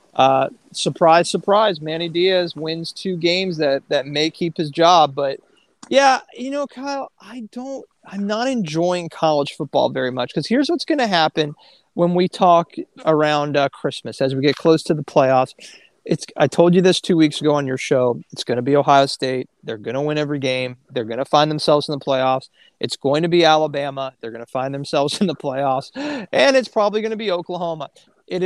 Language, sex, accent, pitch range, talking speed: English, male, American, 145-200 Hz, 210 wpm